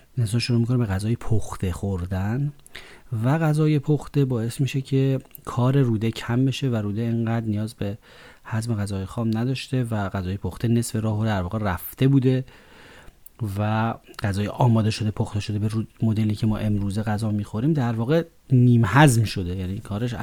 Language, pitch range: Persian, 105-130 Hz